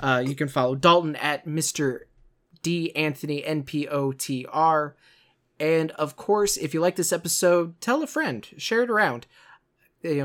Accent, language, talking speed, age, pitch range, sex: American, English, 170 wpm, 20-39, 150-185 Hz, male